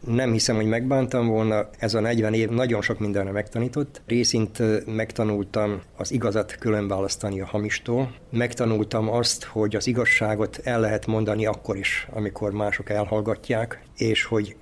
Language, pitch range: Hungarian, 105-120 Hz